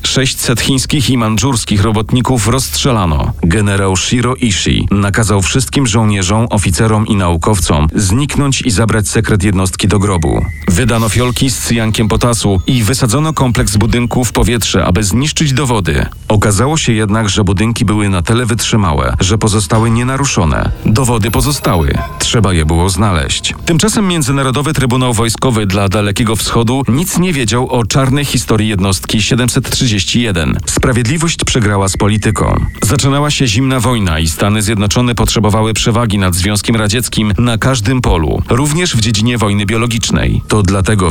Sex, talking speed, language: male, 140 wpm, Polish